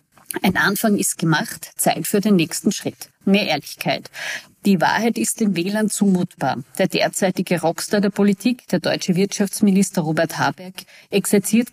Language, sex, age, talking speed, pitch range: German, female, 50-69, 145 wpm, 170-215 Hz